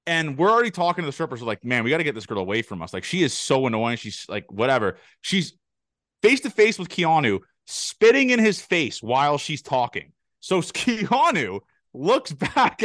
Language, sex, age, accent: English, male, 30-49, American